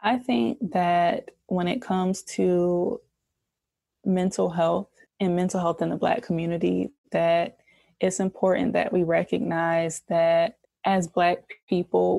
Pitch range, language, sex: 175-195 Hz, English, female